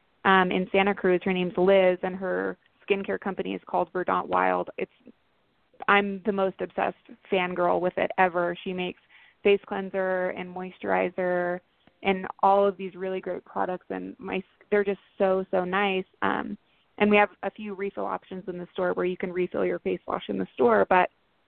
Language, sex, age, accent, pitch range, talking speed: English, female, 20-39, American, 185-200 Hz, 185 wpm